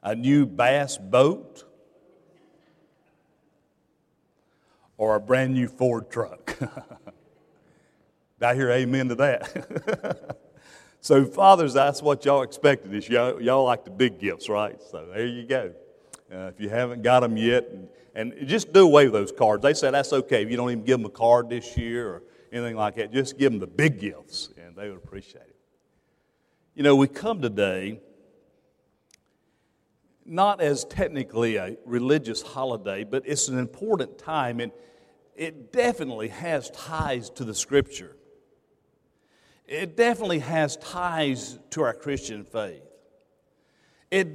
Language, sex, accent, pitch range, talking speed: English, male, American, 120-155 Hz, 145 wpm